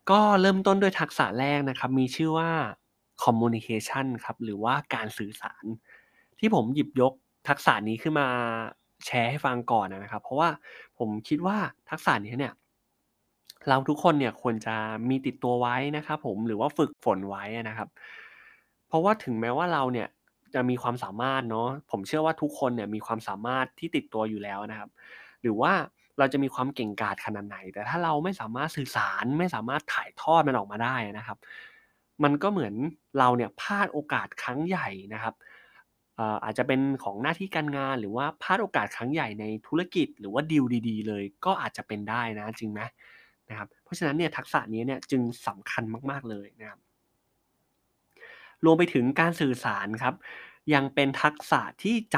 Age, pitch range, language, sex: 20-39, 110-150 Hz, Thai, male